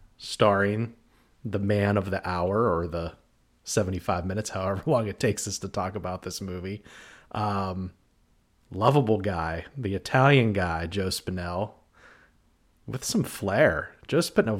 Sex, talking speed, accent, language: male, 135 wpm, American, English